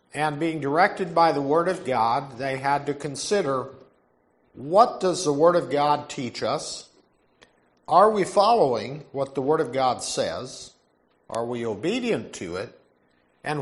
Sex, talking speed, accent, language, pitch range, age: male, 155 wpm, American, English, 125-175 Hz, 50-69